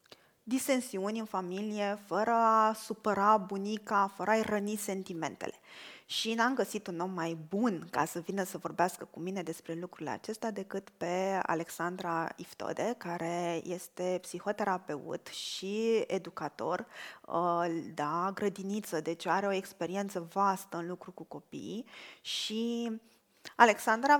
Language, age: Romanian, 20-39